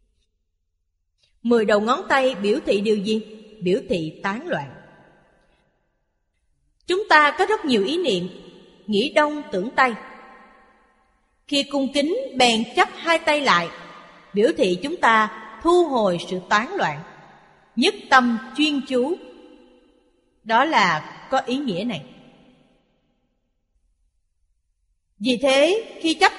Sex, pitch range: female, 190-280 Hz